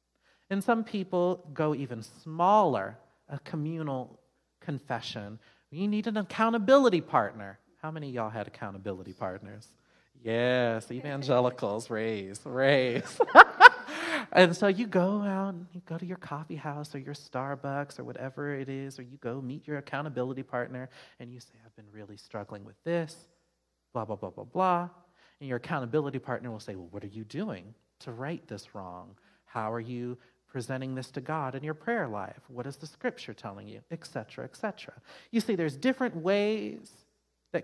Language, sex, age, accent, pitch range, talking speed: English, male, 30-49, American, 105-160 Hz, 170 wpm